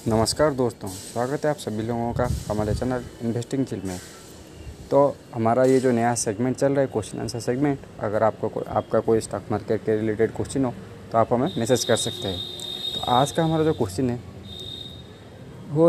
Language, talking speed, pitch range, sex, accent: Hindi, 195 wpm, 110-135 Hz, male, native